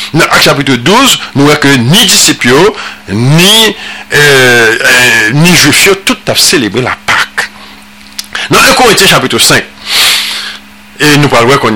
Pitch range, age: 135-210 Hz, 50-69